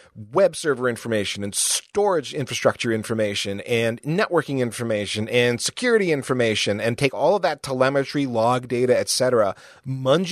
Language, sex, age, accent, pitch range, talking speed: English, male, 30-49, American, 105-130 Hz, 140 wpm